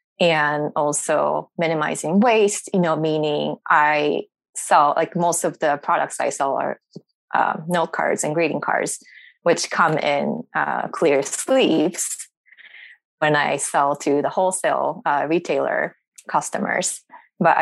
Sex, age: female, 20-39